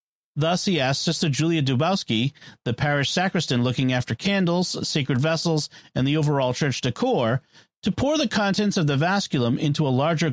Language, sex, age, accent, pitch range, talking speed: English, male, 40-59, American, 135-185 Hz, 170 wpm